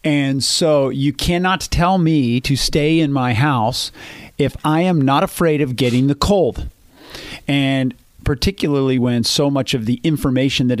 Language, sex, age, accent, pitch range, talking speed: English, male, 40-59, American, 115-140 Hz, 160 wpm